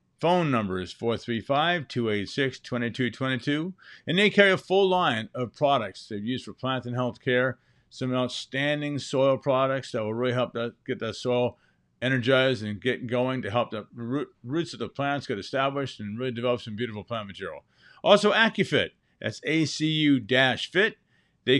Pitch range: 120-150 Hz